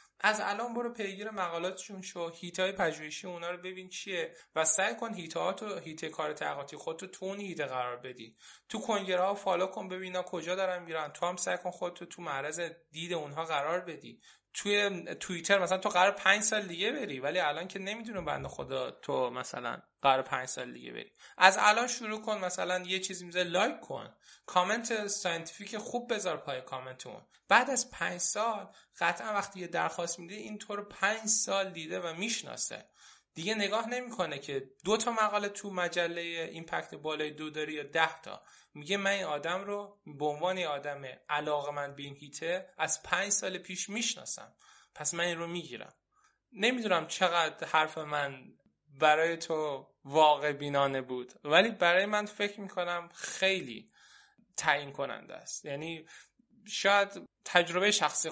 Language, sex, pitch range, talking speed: Persian, male, 150-200 Hz, 165 wpm